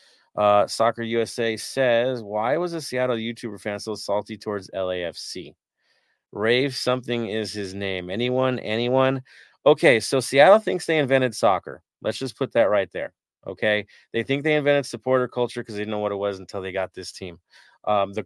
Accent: American